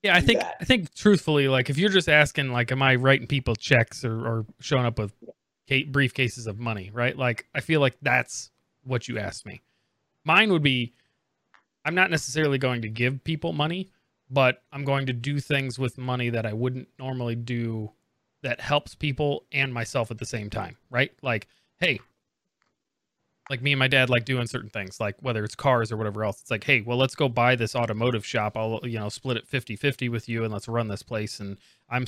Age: 30-49